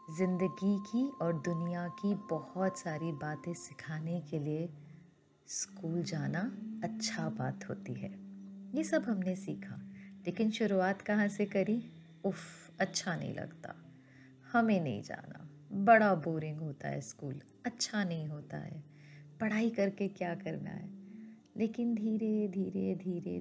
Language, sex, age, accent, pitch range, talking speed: Hindi, female, 30-49, native, 165-220 Hz, 130 wpm